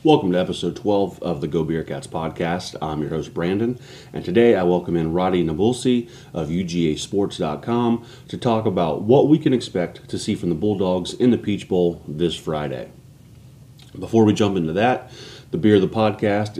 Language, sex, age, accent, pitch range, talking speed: English, male, 30-49, American, 90-115 Hz, 190 wpm